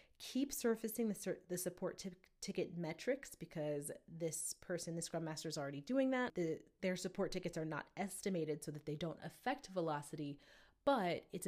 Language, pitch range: English, 155-195 Hz